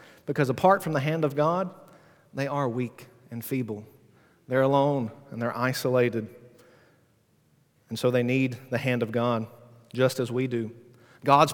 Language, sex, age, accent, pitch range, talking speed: English, male, 40-59, American, 130-165 Hz, 155 wpm